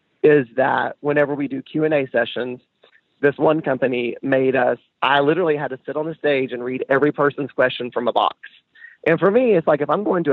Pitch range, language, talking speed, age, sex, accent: 135-165 Hz, English, 215 wpm, 30-49, male, American